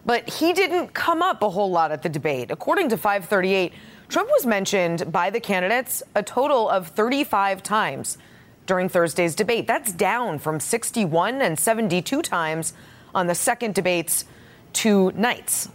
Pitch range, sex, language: 180-245 Hz, female, English